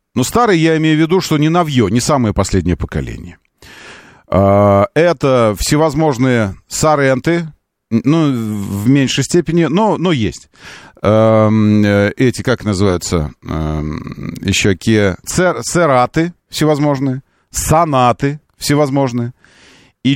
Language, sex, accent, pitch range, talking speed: Russian, male, native, 105-160 Hz, 95 wpm